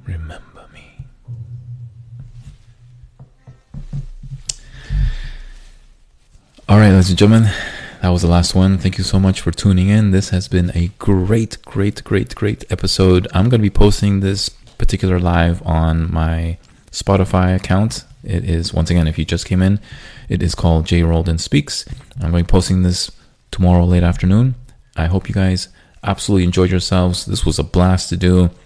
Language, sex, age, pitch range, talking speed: English, male, 20-39, 85-105 Hz, 160 wpm